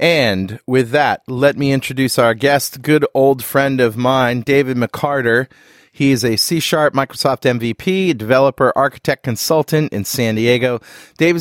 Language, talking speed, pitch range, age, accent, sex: English, 145 wpm, 110-145 Hz, 30-49, American, male